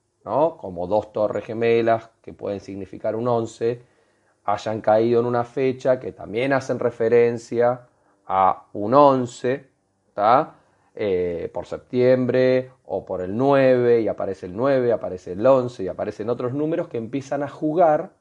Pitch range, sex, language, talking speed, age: 110-145 Hz, male, Spanish, 145 wpm, 30-49